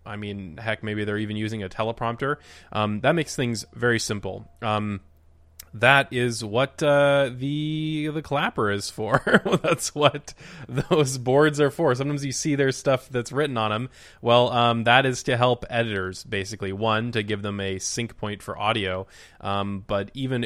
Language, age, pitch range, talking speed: English, 20-39, 100-125 Hz, 175 wpm